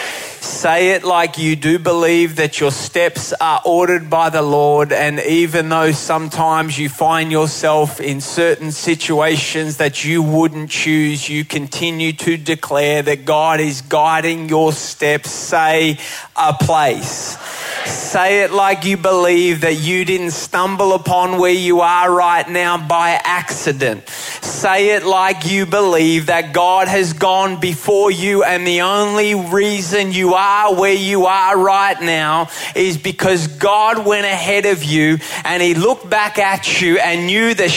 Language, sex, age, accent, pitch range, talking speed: English, male, 20-39, Australian, 165-235 Hz, 155 wpm